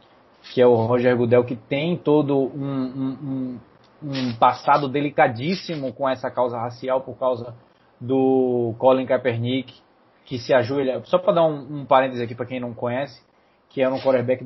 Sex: male